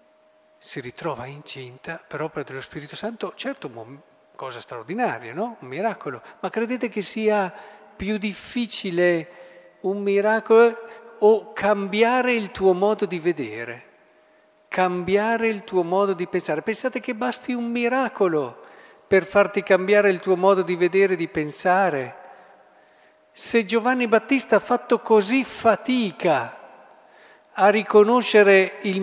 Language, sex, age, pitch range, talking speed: Italian, male, 50-69, 165-220 Hz, 130 wpm